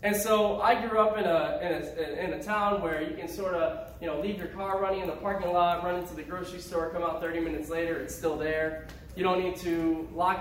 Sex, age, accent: male, 10-29, American